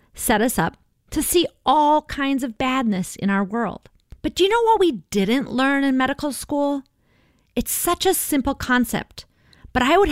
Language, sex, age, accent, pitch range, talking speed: English, female, 30-49, American, 200-305 Hz, 185 wpm